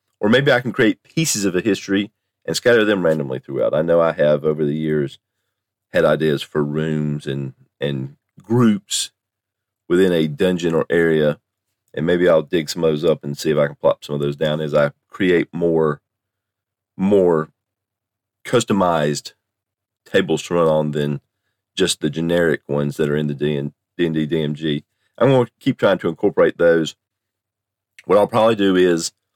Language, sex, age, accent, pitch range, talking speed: English, male, 40-59, American, 75-100 Hz, 175 wpm